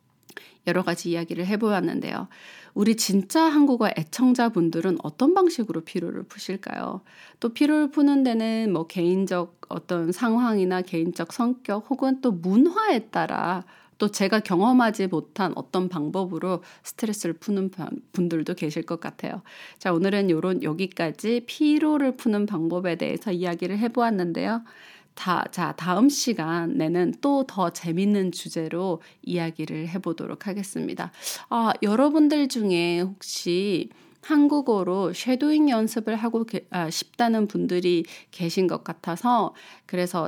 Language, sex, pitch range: Korean, female, 175-250 Hz